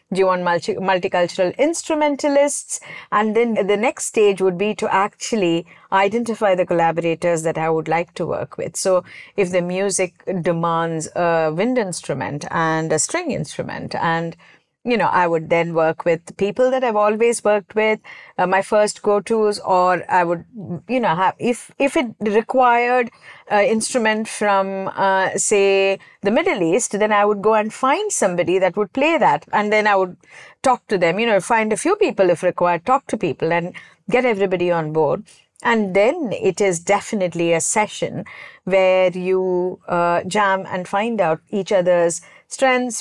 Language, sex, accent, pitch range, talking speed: English, female, Indian, 180-225 Hz, 170 wpm